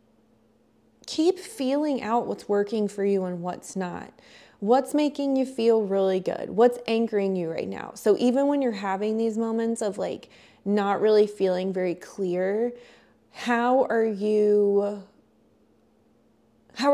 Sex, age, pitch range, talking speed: female, 20-39, 180-225 Hz, 140 wpm